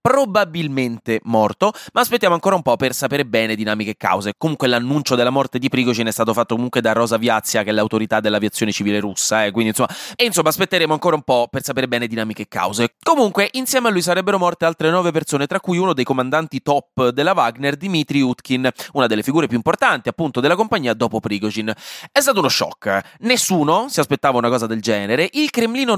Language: Italian